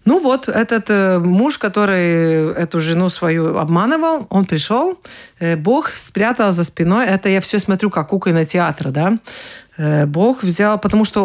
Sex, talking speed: female, 145 wpm